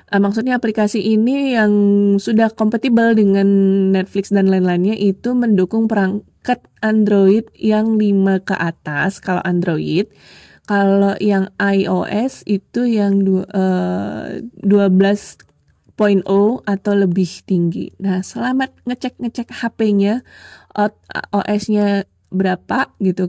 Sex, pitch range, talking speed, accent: female, 185-220 Hz, 95 wpm, native